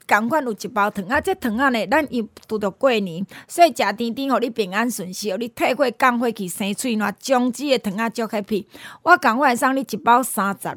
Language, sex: Chinese, female